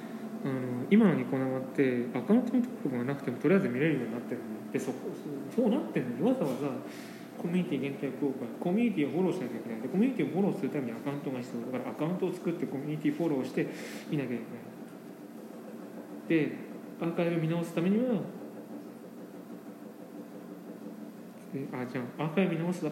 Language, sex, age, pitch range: Japanese, male, 20-39, 135-185 Hz